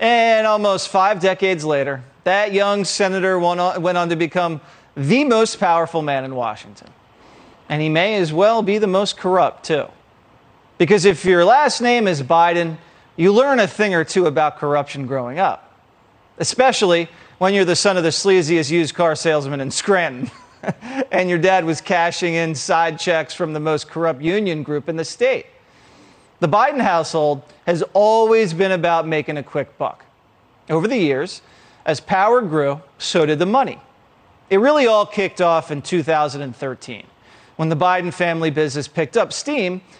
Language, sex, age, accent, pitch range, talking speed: English, male, 40-59, American, 155-200 Hz, 170 wpm